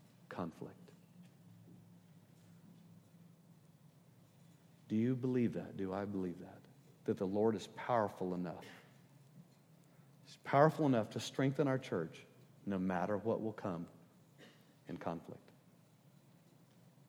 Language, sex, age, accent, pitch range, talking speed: English, male, 50-69, American, 115-160 Hz, 100 wpm